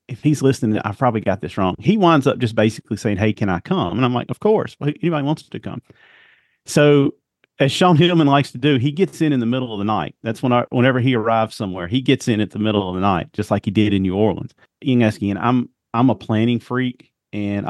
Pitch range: 105-135 Hz